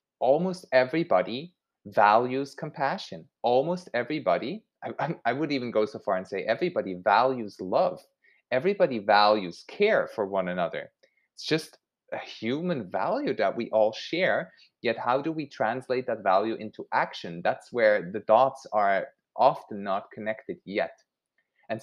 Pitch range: 110-150 Hz